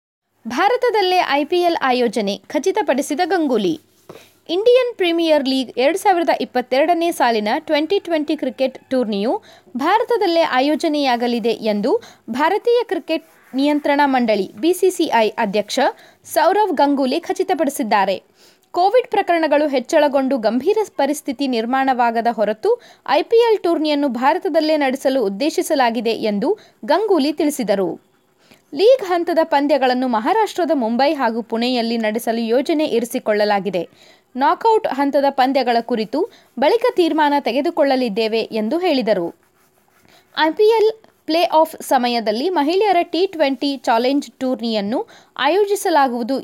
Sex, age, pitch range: female, 20-39, 245-345 Hz